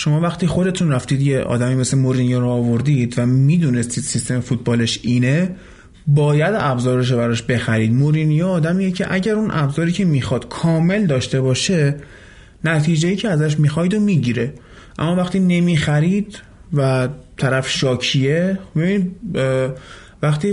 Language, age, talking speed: Persian, 30-49, 135 wpm